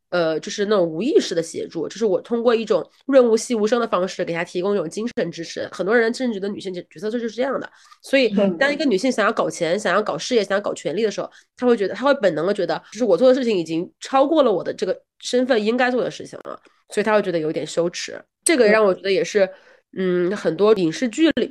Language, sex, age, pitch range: Chinese, female, 20-39, 185-255 Hz